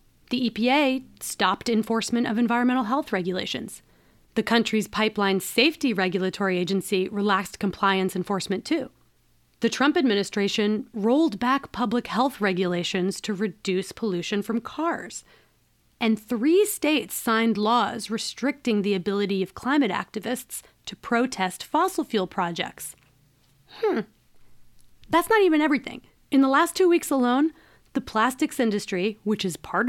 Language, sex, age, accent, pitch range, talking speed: English, female, 30-49, American, 200-265 Hz, 130 wpm